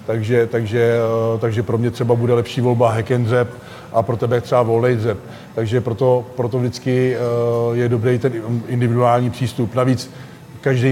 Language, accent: Czech, native